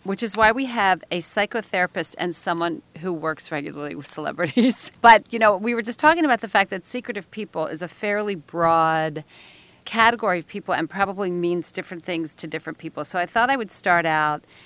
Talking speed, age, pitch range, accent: 200 wpm, 40-59, 160-200 Hz, American